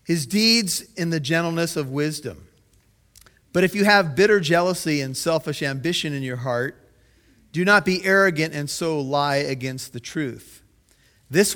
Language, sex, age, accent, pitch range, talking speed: English, male, 40-59, American, 130-175 Hz, 155 wpm